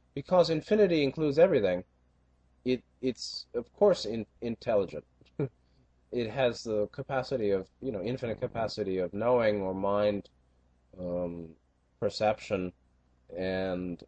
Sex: male